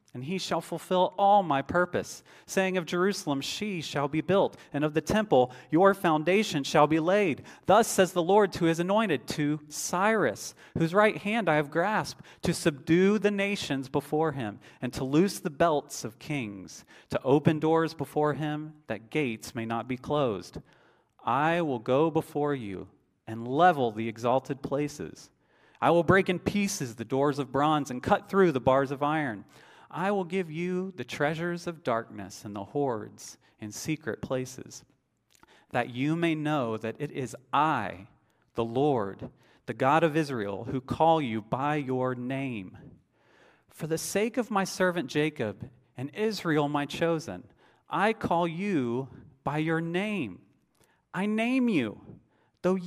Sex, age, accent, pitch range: male, 40-59, American, 130-180 Hz